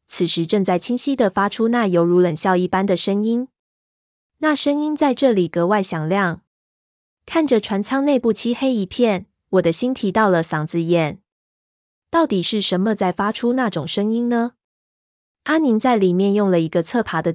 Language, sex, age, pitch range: Chinese, female, 20-39, 180-225 Hz